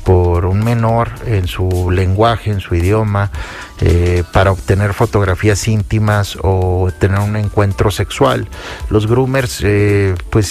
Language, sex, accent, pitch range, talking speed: Spanish, male, Mexican, 95-120 Hz, 130 wpm